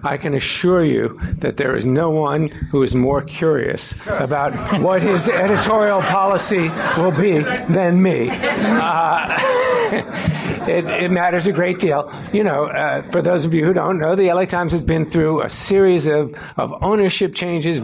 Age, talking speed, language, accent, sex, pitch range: 60-79, 170 wpm, English, American, male, 145-175 Hz